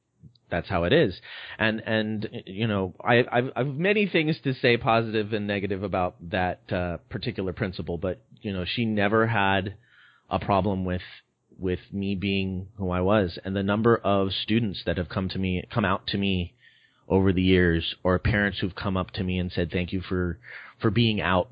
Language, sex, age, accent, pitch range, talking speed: English, male, 30-49, American, 90-115 Hz, 195 wpm